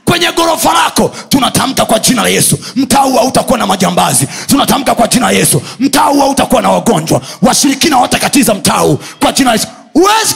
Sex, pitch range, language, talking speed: male, 180-285 Hz, Swahili, 175 wpm